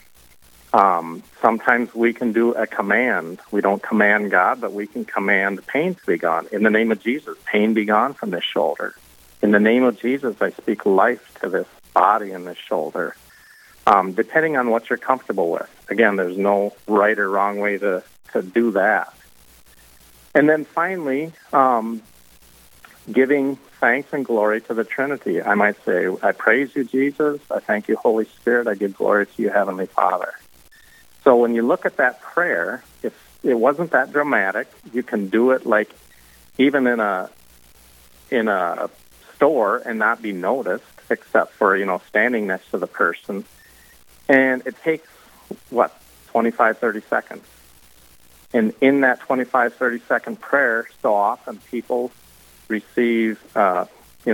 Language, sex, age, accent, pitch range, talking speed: English, male, 50-69, American, 85-125 Hz, 165 wpm